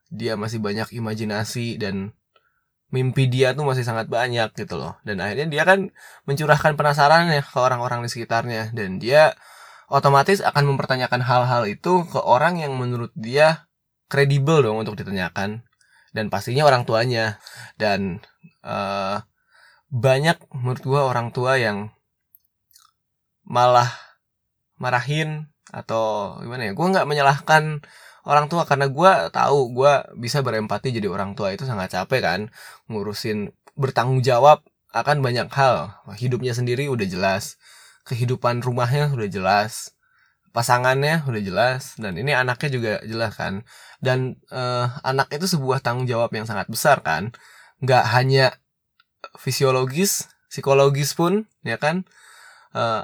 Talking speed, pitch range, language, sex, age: 130 wpm, 115-150 Hz, Indonesian, male, 20-39